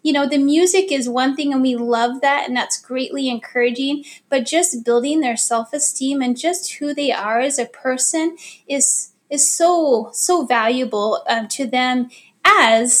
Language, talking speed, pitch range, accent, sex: English, 175 wpm, 235-285 Hz, American, female